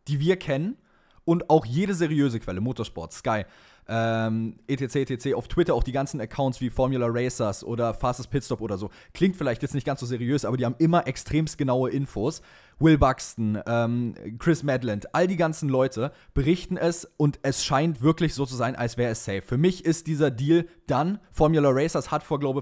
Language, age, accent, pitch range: German, 20-39, German, 120-165 Hz